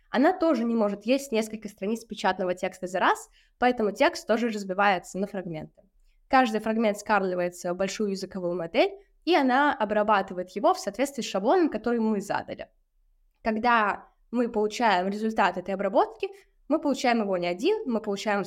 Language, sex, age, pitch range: Russian, female, 10-29, 200-250 Hz